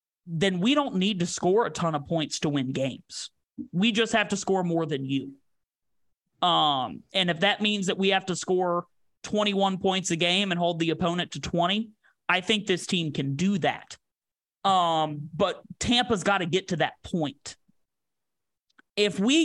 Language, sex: English, male